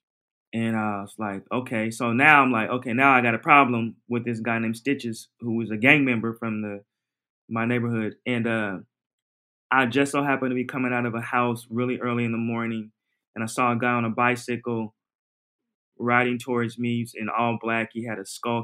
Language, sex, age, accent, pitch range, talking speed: English, male, 20-39, American, 115-135 Hz, 210 wpm